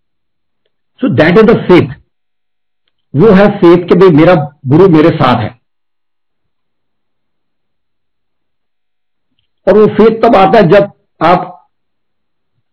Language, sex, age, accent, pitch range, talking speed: Hindi, male, 50-69, native, 145-190 Hz, 95 wpm